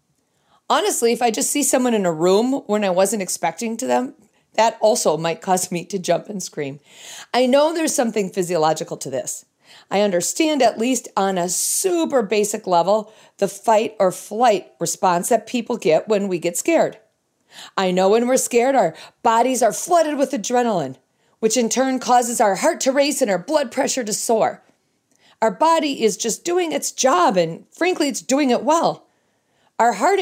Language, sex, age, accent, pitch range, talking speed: English, female, 40-59, American, 190-275 Hz, 185 wpm